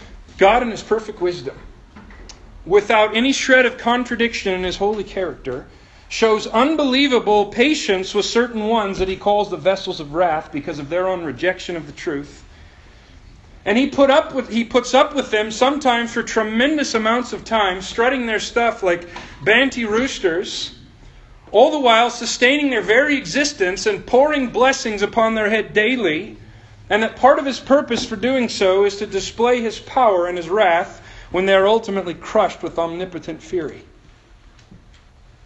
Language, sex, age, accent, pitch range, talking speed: English, male, 40-59, American, 140-230 Hz, 160 wpm